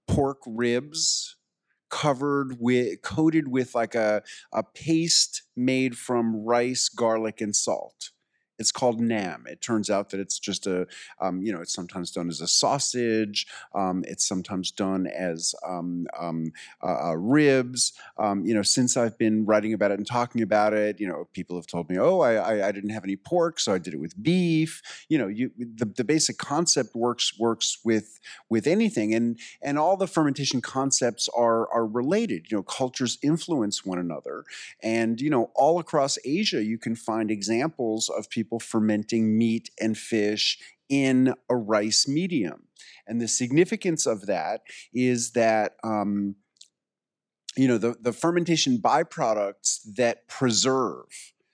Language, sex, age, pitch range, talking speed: English, male, 40-59, 105-130 Hz, 165 wpm